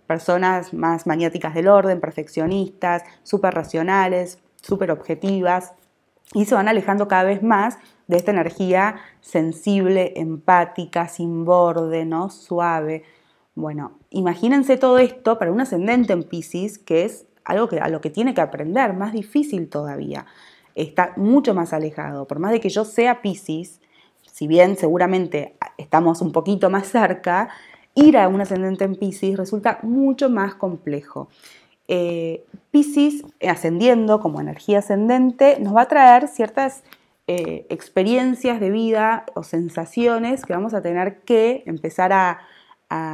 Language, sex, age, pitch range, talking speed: Spanish, female, 20-39, 170-225 Hz, 140 wpm